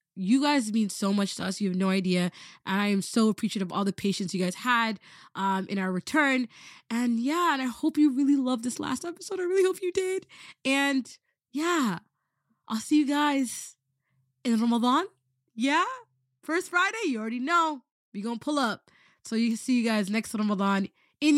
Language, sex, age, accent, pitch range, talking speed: English, female, 20-39, American, 200-290 Hz, 200 wpm